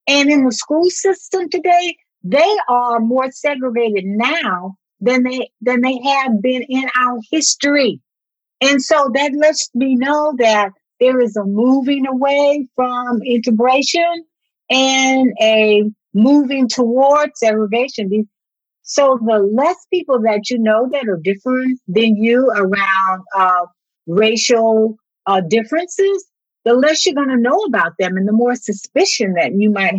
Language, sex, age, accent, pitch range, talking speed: English, female, 50-69, American, 220-300 Hz, 140 wpm